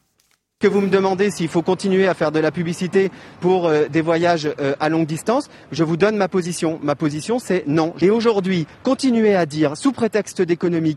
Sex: male